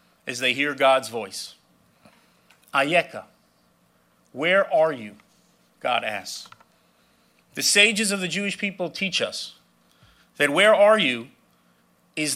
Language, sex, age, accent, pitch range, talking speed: English, male, 40-59, American, 145-185 Hz, 115 wpm